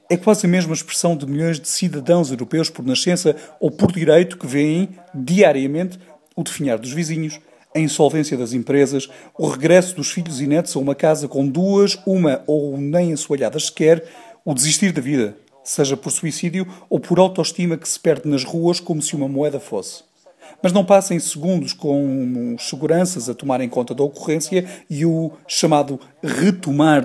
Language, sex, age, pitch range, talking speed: English, male, 40-59, 145-185 Hz, 170 wpm